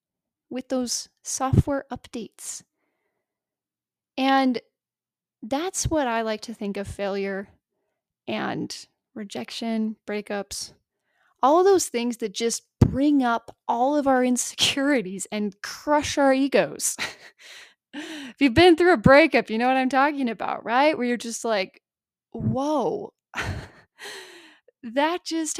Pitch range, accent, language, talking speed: 230-285 Hz, American, English, 120 wpm